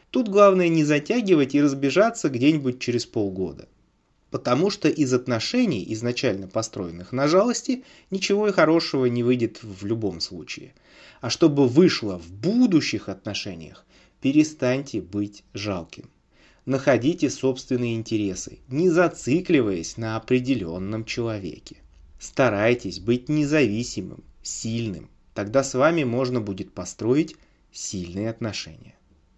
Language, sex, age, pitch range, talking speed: English, male, 30-49, 105-145 Hz, 110 wpm